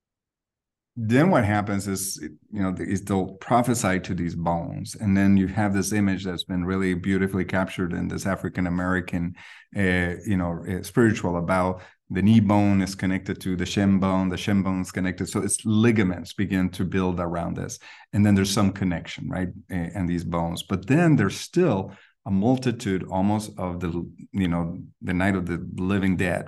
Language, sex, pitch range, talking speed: English, male, 90-105 Hz, 180 wpm